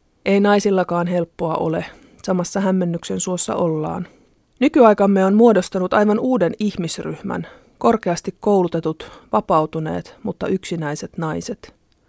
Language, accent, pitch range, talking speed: Finnish, native, 170-200 Hz, 100 wpm